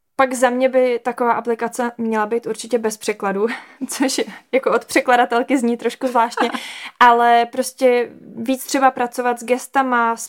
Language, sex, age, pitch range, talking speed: Czech, female, 20-39, 210-250 Hz, 150 wpm